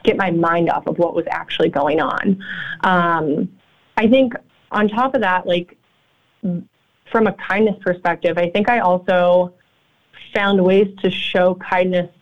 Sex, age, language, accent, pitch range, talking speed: female, 20-39, English, American, 175-205 Hz, 150 wpm